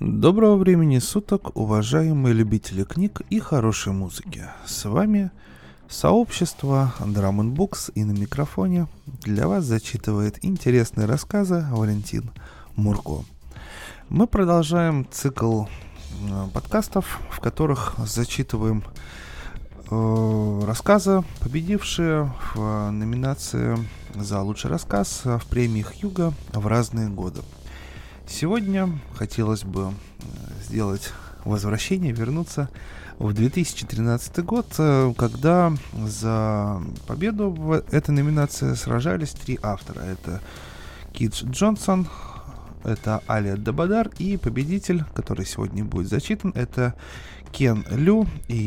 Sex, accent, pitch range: male, native, 105-160 Hz